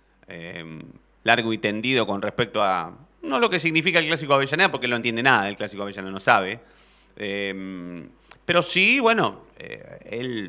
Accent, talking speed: Argentinian, 170 wpm